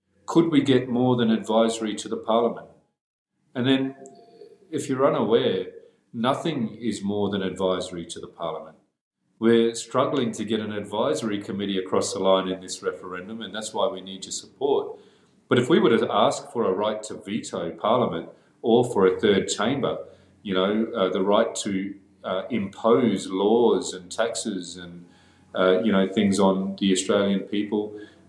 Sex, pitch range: male, 95-120 Hz